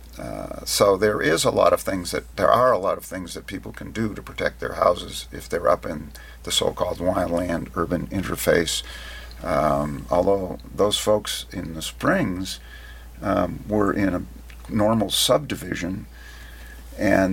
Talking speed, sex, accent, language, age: 155 wpm, male, American, English, 50-69